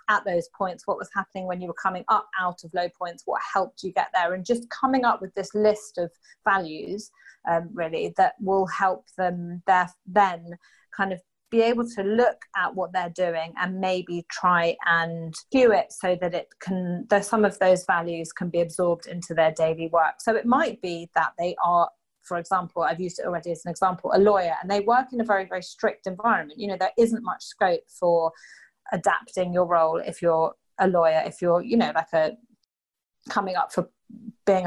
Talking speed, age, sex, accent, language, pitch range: 210 wpm, 30-49, female, British, English, 175-215 Hz